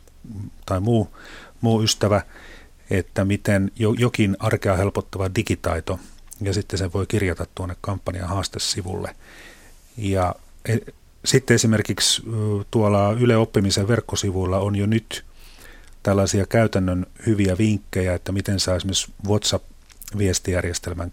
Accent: native